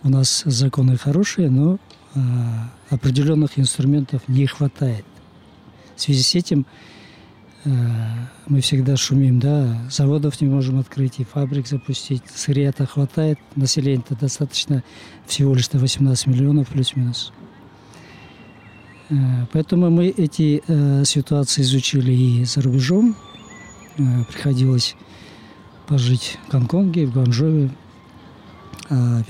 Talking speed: 110 wpm